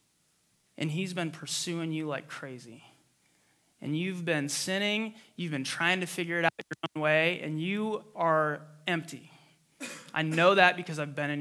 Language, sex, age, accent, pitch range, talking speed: English, male, 20-39, American, 150-175 Hz, 170 wpm